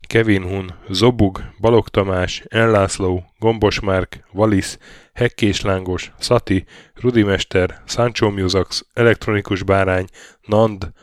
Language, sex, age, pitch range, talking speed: Hungarian, male, 10-29, 90-110 Hz, 100 wpm